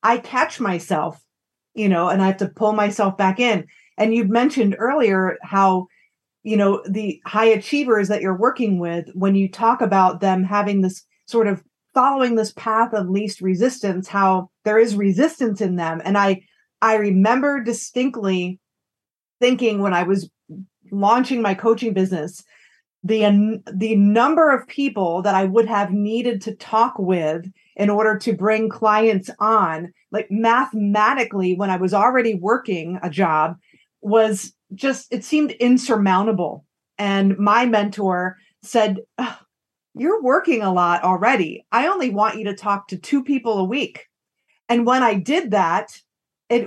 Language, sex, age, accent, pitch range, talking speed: English, female, 30-49, American, 195-240 Hz, 155 wpm